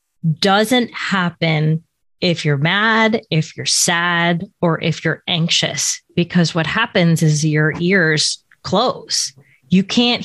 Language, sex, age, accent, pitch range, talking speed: English, female, 20-39, American, 155-195 Hz, 125 wpm